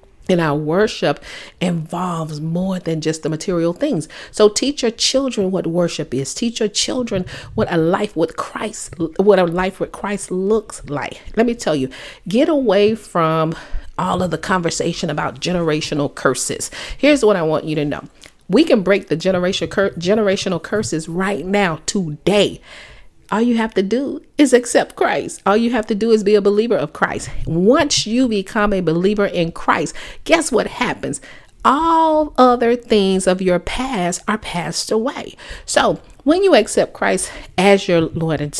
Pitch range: 170-220 Hz